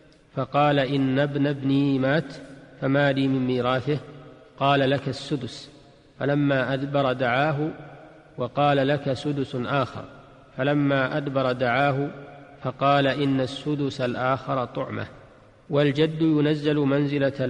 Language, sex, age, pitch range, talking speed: Arabic, male, 40-59, 130-145 Hz, 105 wpm